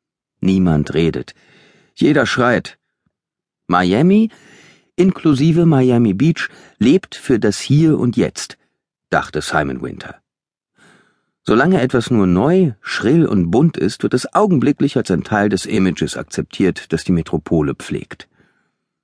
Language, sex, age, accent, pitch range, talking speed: German, male, 50-69, German, 90-130 Hz, 120 wpm